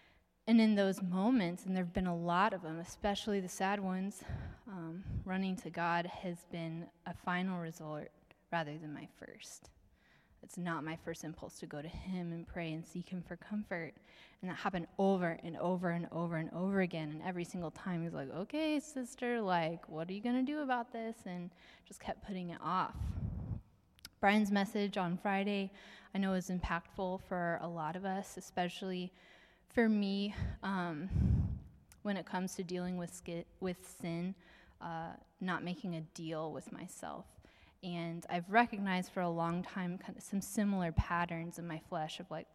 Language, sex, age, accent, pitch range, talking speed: English, female, 20-39, American, 170-200 Hz, 185 wpm